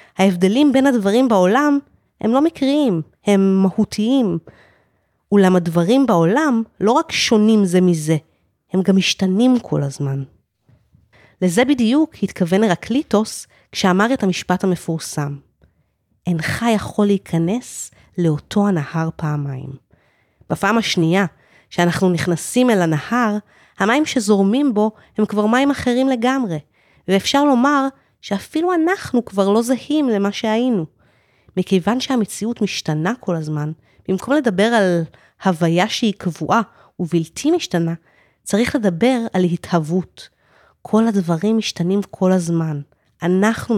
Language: Hebrew